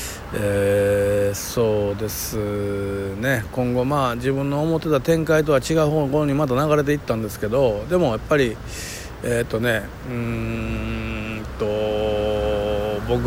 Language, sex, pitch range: Japanese, male, 110-145 Hz